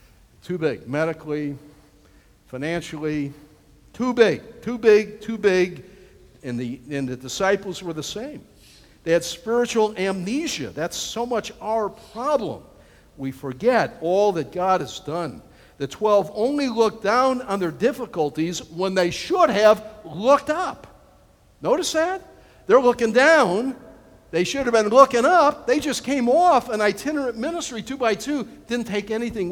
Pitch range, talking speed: 150-235 Hz, 145 wpm